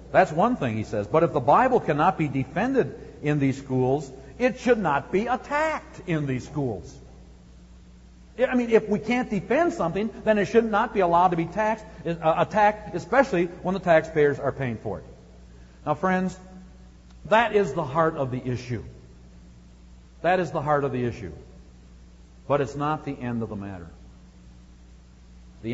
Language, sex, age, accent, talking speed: English, male, 60-79, American, 170 wpm